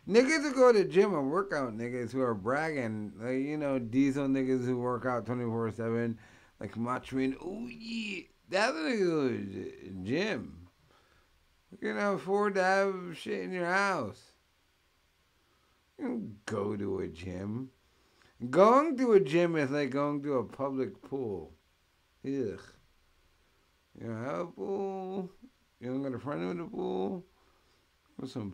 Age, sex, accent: 50-69, male, American